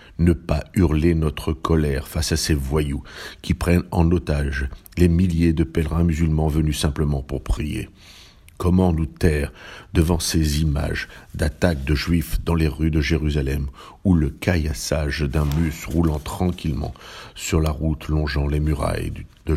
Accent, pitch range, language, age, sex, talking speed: French, 75-85 Hz, French, 60-79, male, 155 wpm